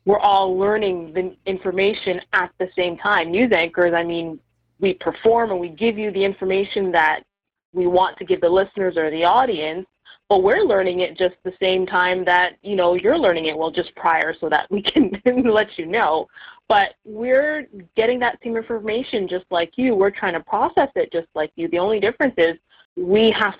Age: 20-39